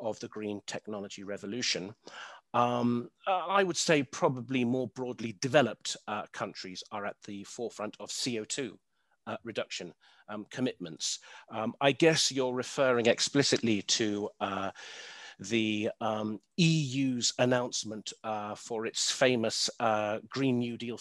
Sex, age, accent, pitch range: male, 40-59, British, 105-130 Hz